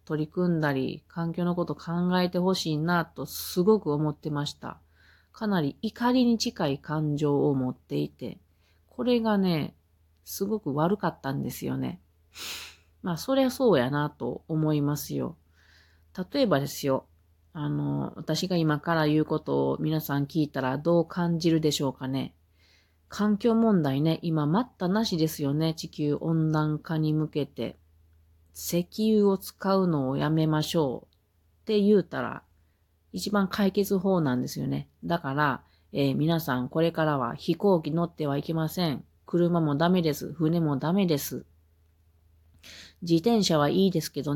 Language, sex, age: Japanese, female, 40-59